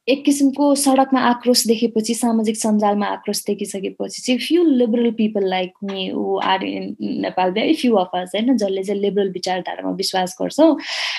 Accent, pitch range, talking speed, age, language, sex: Indian, 190-245 Hz, 85 wpm, 20-39, English, female